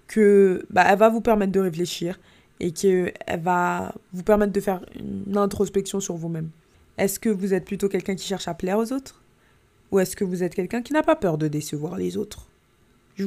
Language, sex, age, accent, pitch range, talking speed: French, female, 20-39, French, 170-205 Hz, 205 wpm